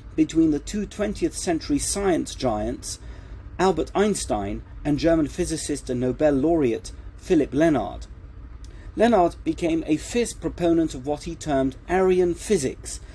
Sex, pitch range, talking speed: male, 130-175 Hz, 130 wpm